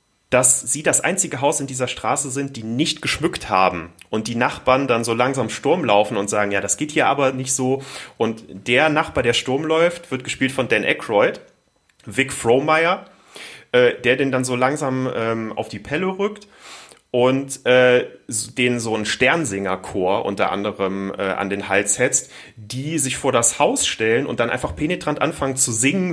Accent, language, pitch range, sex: German, German, 115-140 Hz, male